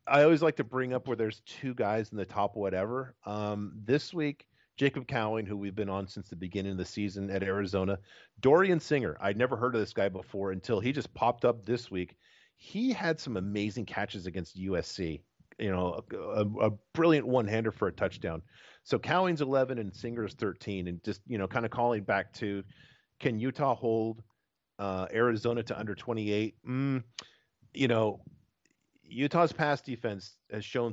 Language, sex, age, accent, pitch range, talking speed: English, male, 40-59, American, 100-130 Hz, 185 wpm